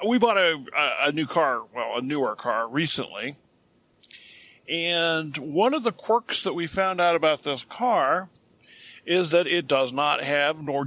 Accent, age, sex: American, 50-69, male